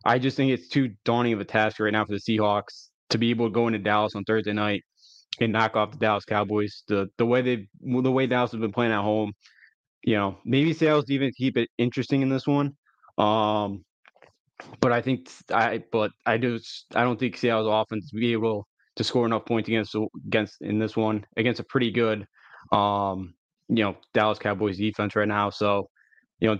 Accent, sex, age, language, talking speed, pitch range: American, male, 20-39, English, 210 wpm, 105-120 Hz